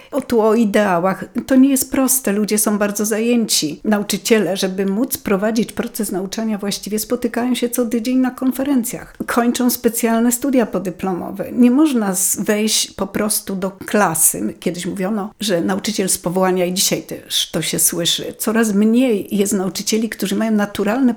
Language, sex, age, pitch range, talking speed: Polish, female, 50-69, 195-250 Hz, 155 wpm